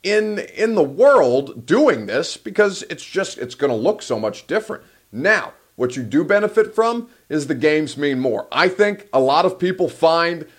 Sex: male